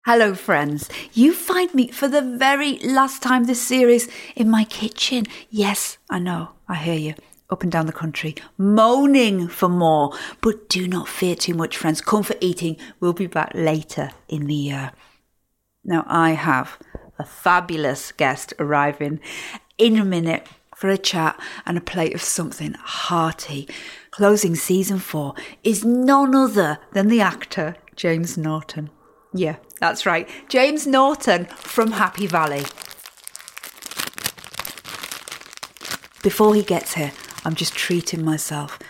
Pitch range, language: 155-220 Hz, English